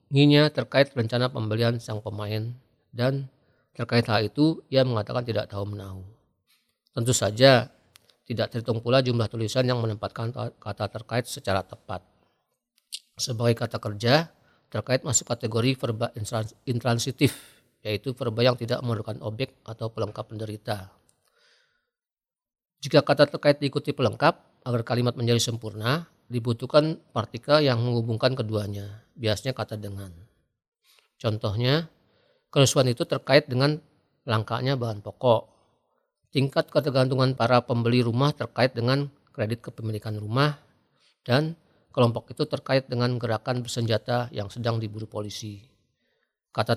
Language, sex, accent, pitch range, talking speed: Indonesian, male, native, 110-135 Hz, 115 wpm